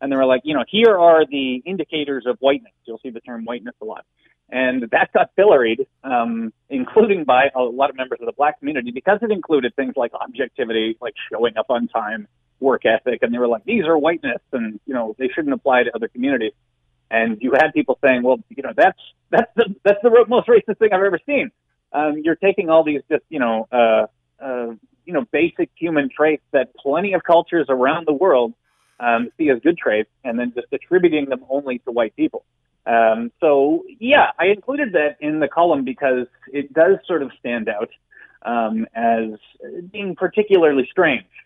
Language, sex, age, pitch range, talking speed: English, male, 30-49, 120-195 Hz, 200 wpm